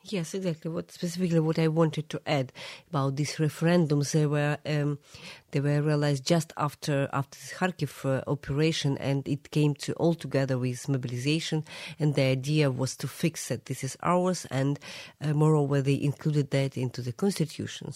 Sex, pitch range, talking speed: female, 140-170 Hz, 165 wpm